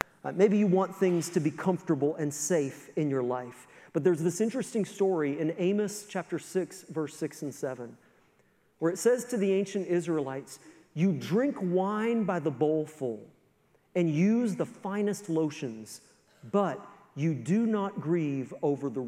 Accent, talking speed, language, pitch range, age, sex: American, 160 wpm, English, 140-190 Hz, 40-59, male